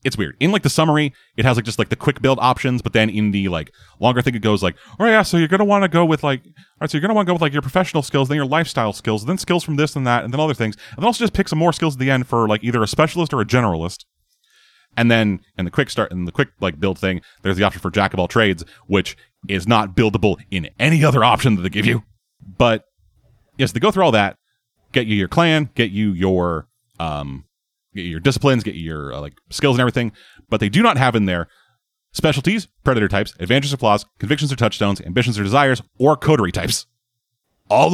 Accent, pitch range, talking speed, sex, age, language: American, 100-150 Hz, 260 wpm, male, 30-49, English